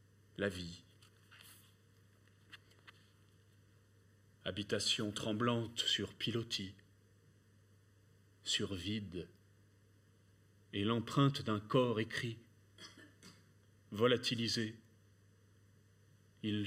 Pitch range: 100-115 Hz